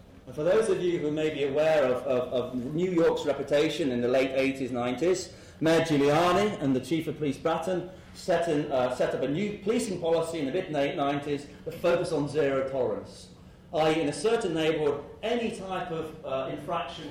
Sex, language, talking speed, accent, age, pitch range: male, English, 195 wpm, British, 40-59, 135-170 Hz